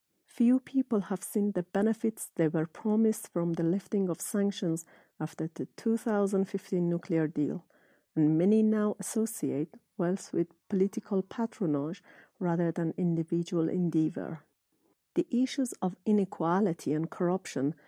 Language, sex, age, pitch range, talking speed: English, female, 50-69, 165-210 Hz, 125 wpm